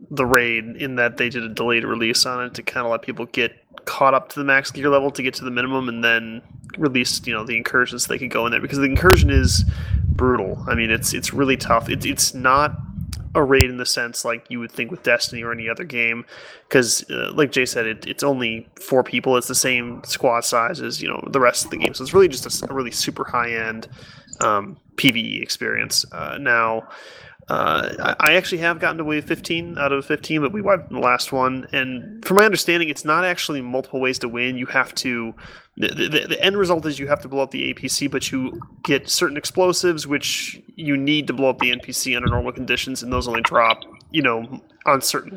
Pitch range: 120-145 Hz